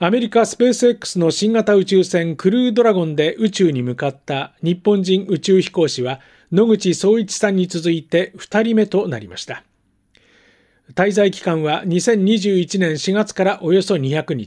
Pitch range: 155-215 Hz